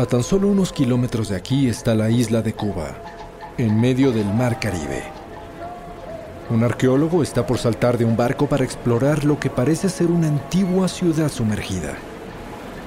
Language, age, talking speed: Spanish, 40-59, 165 wpm